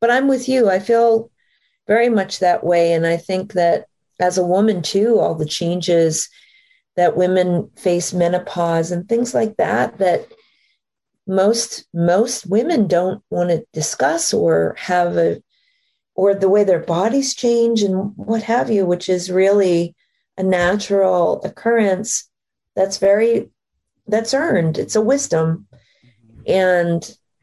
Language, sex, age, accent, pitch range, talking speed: English, female, 40-59, American, 175-230 Hz, 140 wpm